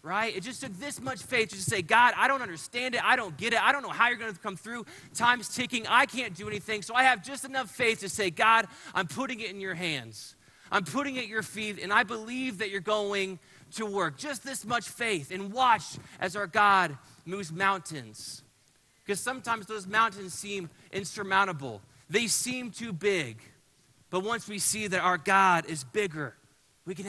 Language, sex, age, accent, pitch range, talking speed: English, male, 30-49, American, 140-210 Hz, 210 wpm